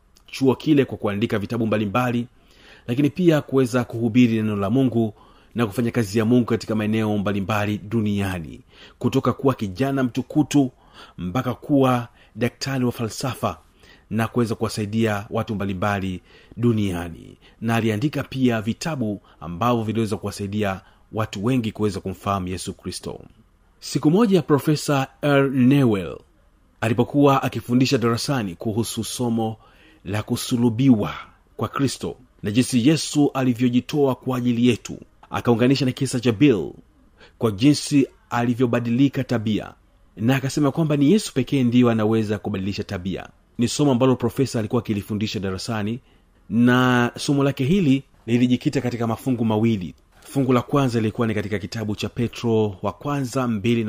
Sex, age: male, 40-59